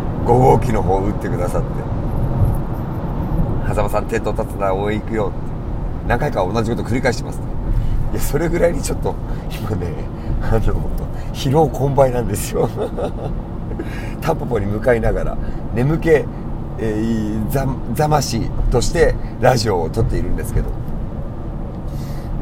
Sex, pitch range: male, 105-130 Hz